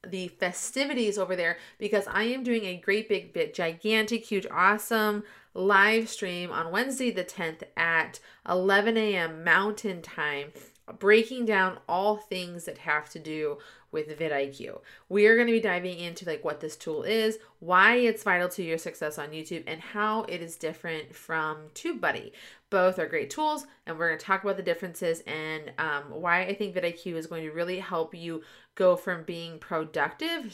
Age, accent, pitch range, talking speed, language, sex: 30-49, American, 165-220 Hz, 180 wpm, English, female